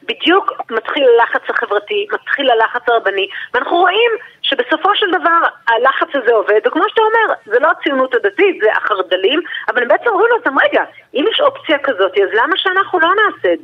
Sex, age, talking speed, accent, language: female, 40-59, 180 wpm, native, Hebrew